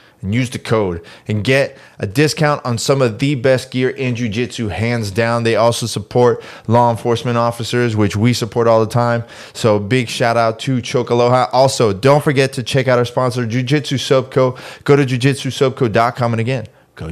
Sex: male